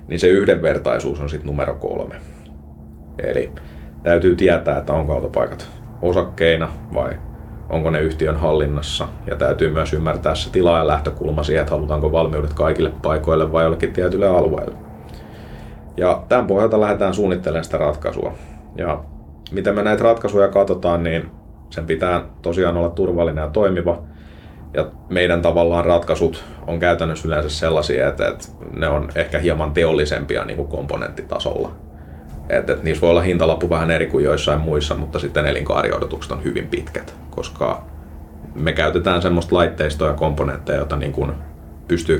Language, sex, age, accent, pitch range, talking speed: Finnish, male, 30-49, native, 75-85 Hz, 140 wpm